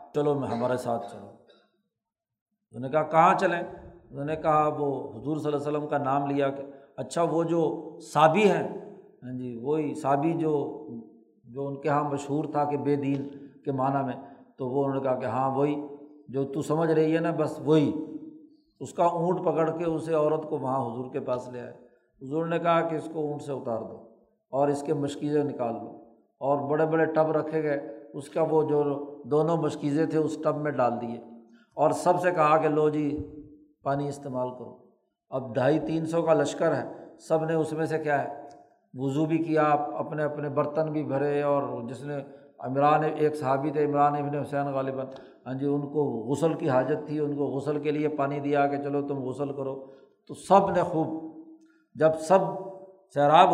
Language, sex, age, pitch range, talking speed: Urdu, male, 50-69, 140-160 Hz, 200 wpm